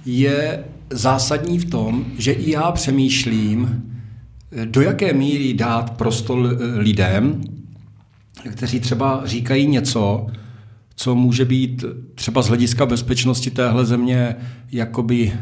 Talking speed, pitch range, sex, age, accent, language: 110 wpm, 115-160 Hz, male, 50-69, native, Czech